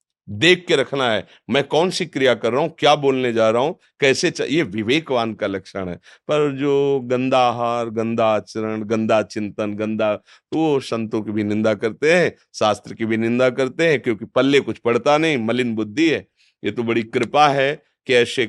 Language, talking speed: Hindi, 190 wpm